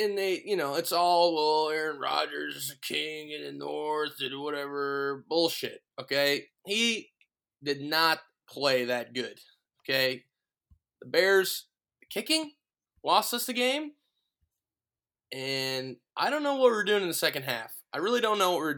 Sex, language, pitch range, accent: male, English, 140-210 Hz, American